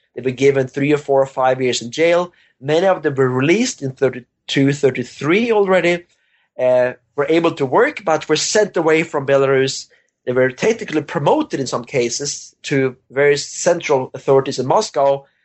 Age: 30-49